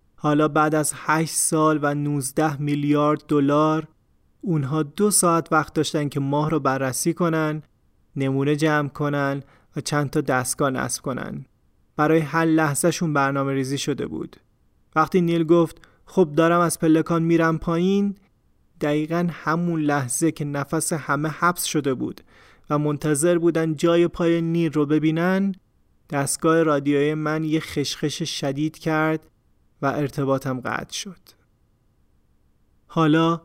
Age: 30-49